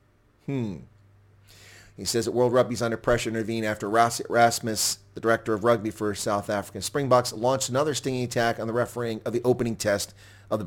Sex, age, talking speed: male, 40-59, 190 wpm